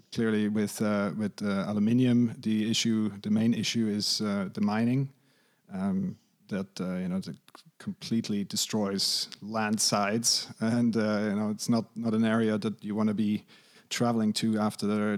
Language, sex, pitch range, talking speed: English, male, 105-135 Hz, 170 wpm